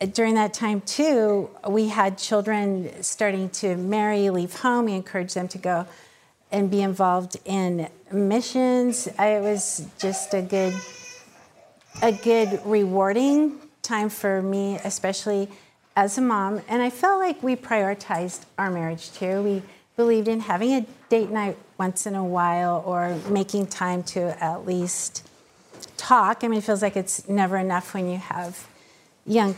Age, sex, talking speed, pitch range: 50-69, female, 150 wpm, 190-225 Hz